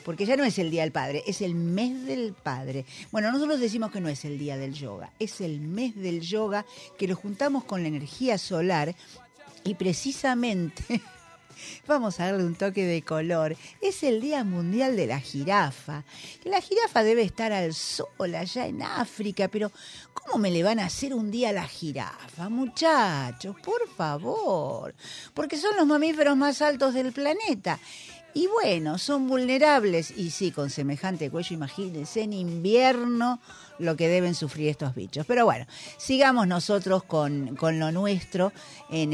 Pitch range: 155-235 Hz